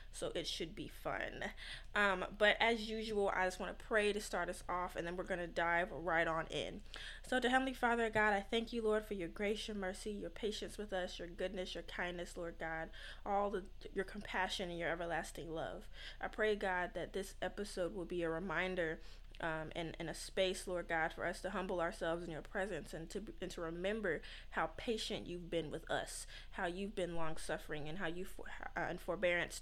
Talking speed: 215 wpm